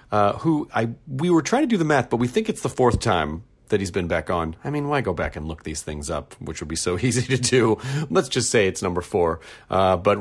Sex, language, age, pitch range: male, English, 40-59, 100-130 Hz